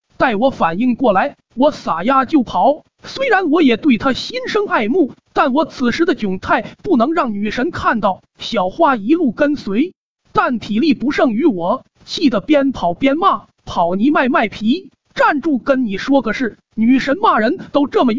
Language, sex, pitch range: Chinese, male, 235-335 Hz